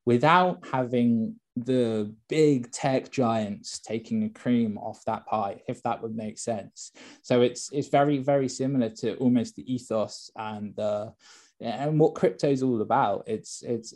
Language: English